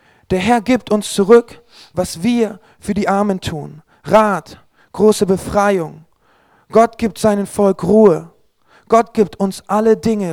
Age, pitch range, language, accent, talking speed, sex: 40-59, 185-220 Hz, German, German, 140 wpm, male